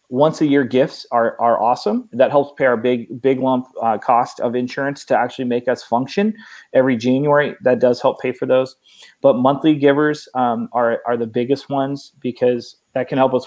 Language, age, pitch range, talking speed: English, 30-49, 120-140 Hz, 200 wpm